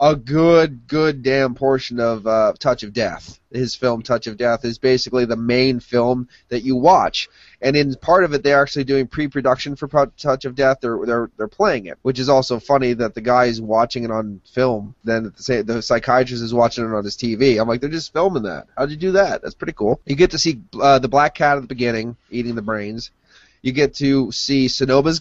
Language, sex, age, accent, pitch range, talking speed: English, male, 30-49, American, 115-140 Hz, 225 wpm